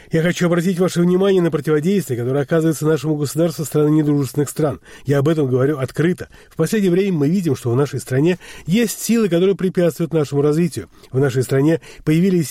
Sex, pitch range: male, 140-170 Hz